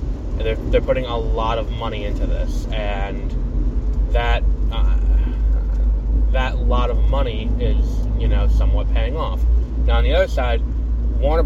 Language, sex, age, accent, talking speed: English, male, 20-39, American, 145 wpm